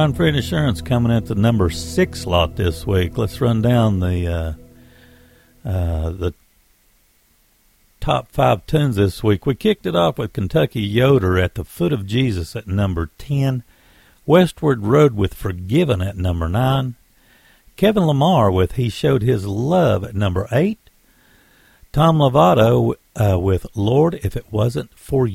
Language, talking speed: English, 150 wpm